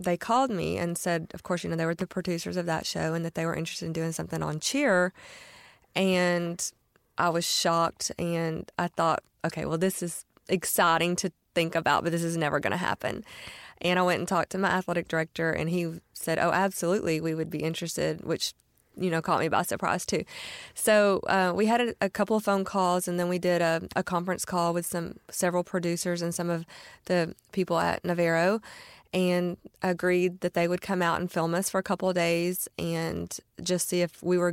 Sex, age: female, 20-39